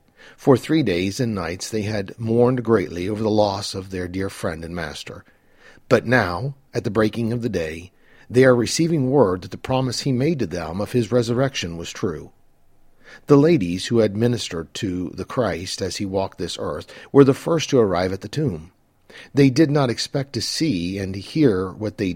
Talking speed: 200 wpm